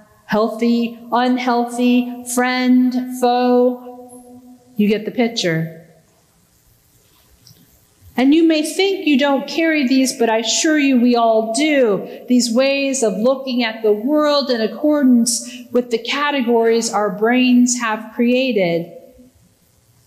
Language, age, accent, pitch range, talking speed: English, 40-59, American, 220-265 Hz, 115 wpm